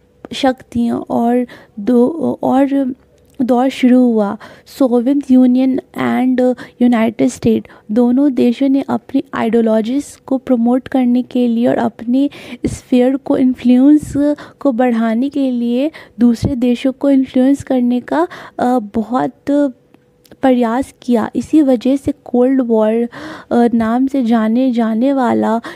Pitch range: 235-265 Hz